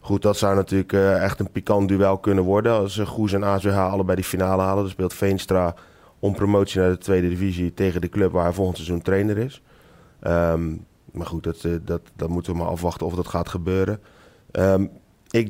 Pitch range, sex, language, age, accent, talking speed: 85-100 Hz, male, Dutch, 30-49, Dutch, 200 wpm